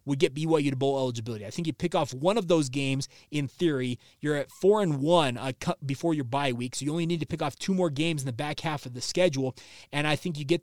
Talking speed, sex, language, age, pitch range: 270 wpm, male, English, 20-39, 135-165 Hz